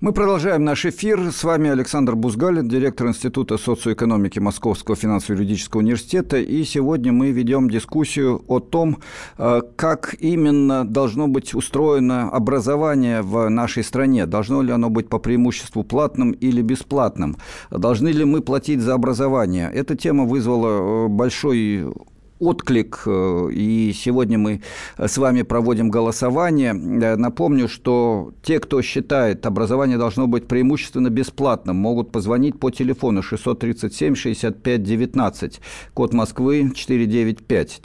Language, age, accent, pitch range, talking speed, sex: Russian, 50-69, native, 115-135 Hz, 120 wpm, male